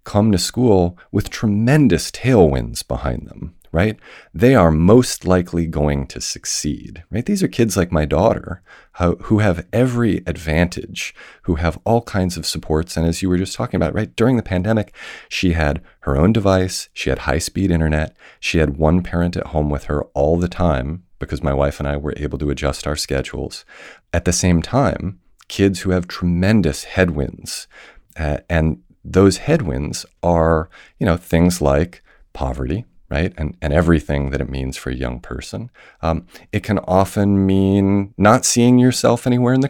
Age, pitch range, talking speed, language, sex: 40-59, 80-100 Hz, 175 wpm, English, male